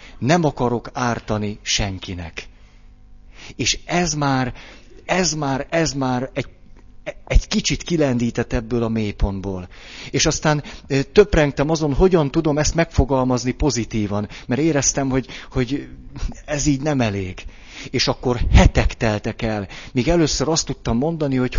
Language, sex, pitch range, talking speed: Hungarian, male, 110-145 Hz, 130 wpm